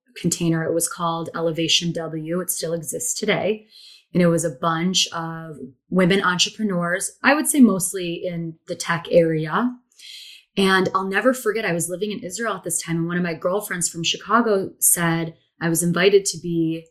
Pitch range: 165-195 Hz